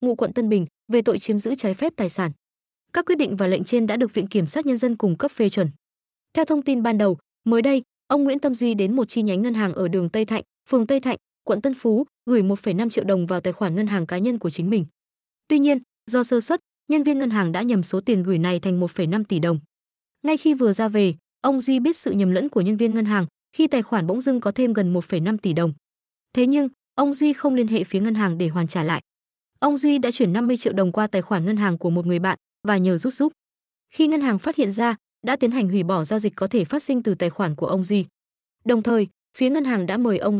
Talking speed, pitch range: 270 wpm, 190-255 Hz